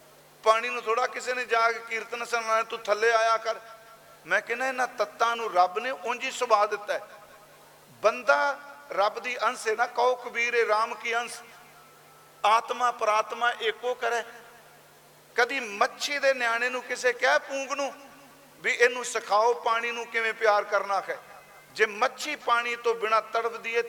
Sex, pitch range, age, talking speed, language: male, 220-250 Hz, 50-69, 165 wpm, Punjabi